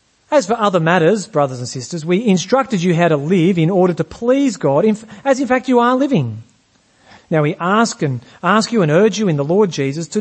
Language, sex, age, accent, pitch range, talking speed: English, male, 40-59, Australian, 155-220 Hz, 225 wpm